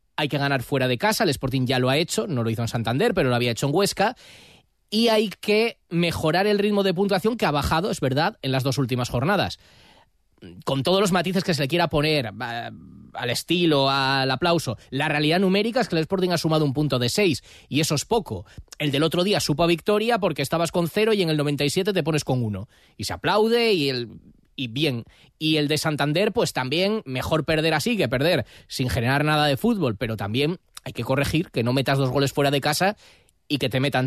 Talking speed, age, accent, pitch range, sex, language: 230 wpm, 20-39, Spanish, 135-190 Hz, male, Spanish